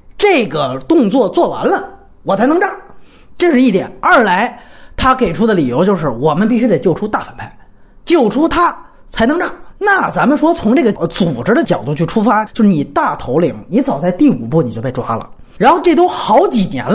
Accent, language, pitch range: native, Chinese, 180-280 Hz